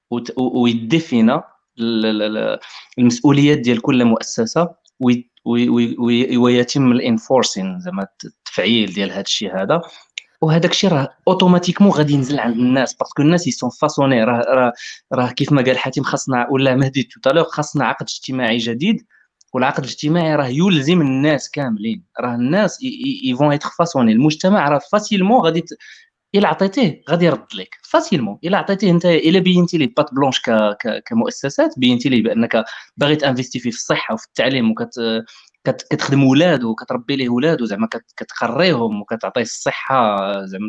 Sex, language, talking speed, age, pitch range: male, Arabic, 135 wpm, 20-39, 120-175 Hz